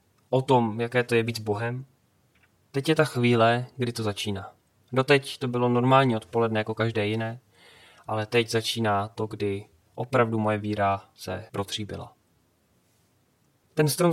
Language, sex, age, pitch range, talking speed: Czech, male, 30-49, 110-135 Hz, 150 wpm